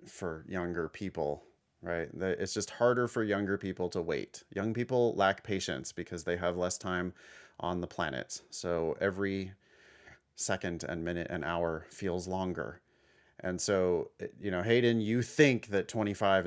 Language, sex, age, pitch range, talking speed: English, male, 30-49, 90-120 Hz, 155 wpm